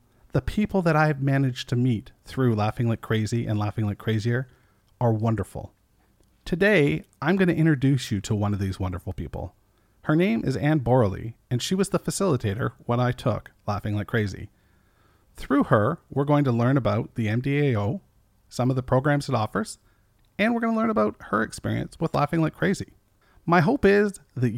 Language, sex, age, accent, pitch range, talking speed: English, male, 40-59, American, 105-145 Hz, 185 wpm